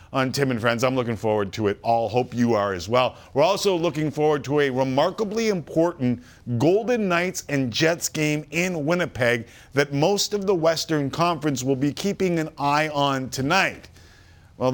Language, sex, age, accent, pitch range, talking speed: English, male, 40-59, American, 110-155 Hz, 180 wpm